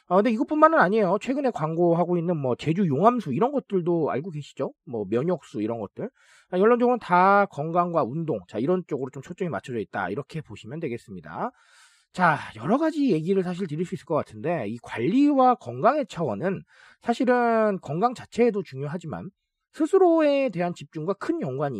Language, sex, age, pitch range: Korean, male, 40-59, 155-235 Hz